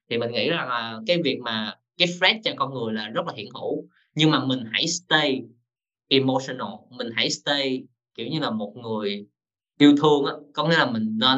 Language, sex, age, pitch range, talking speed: Vietnamese, male, 20-39, 120-160 Hz, 205 wpm